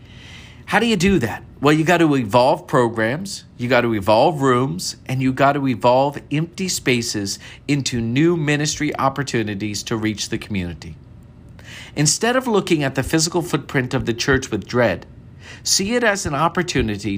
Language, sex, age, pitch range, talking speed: English, male, 50-69, 115-165 Hz, 170 wpm